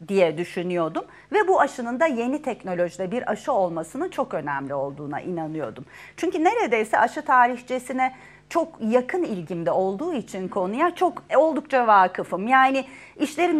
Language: Turkish